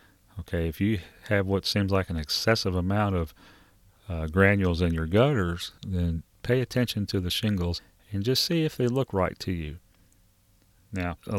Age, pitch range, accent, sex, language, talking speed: 40-59, 85-100 Hz, American, male, English, 175 wpm